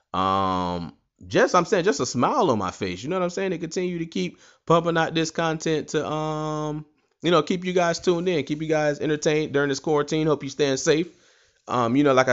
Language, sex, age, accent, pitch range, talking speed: English, male, 20-39, American, 135-160 Hz, 230 wpm